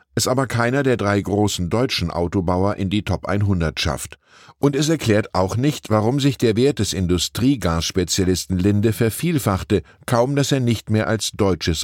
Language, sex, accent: German, male, German